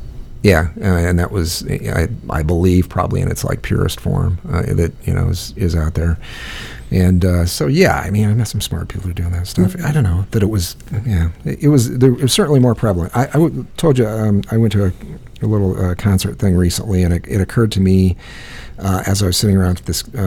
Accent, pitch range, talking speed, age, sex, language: American, 90-115 Hz, 230 wpm, 40-59, male, English